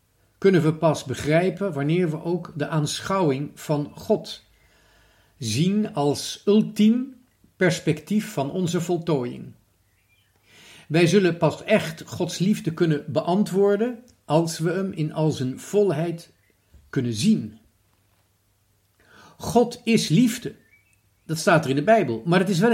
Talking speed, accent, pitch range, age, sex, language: 125 wpm, Dutch, 125-195 Hz, 50-69, male, Dutch